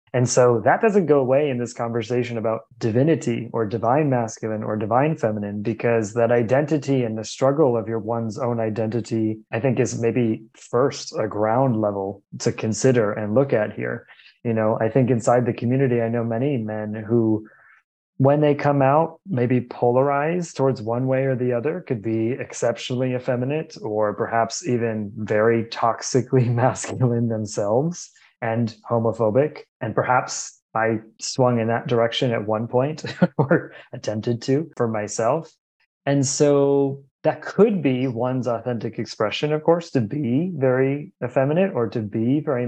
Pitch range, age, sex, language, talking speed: 115-135 Hz, 20-39, male, English, 155 wpm